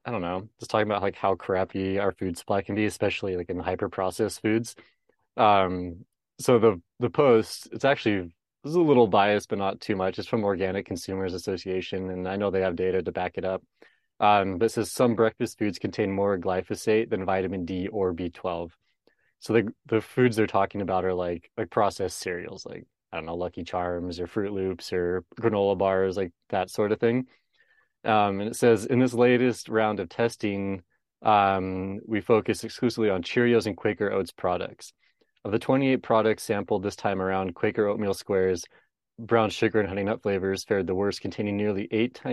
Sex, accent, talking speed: male, American, 195 wpm